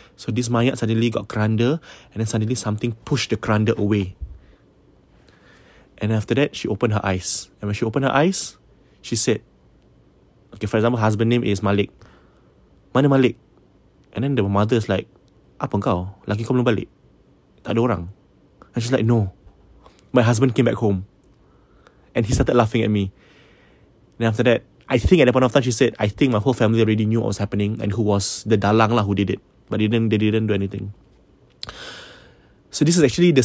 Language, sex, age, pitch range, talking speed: English, male, 20-39, 105-125 Hz, 195 wpm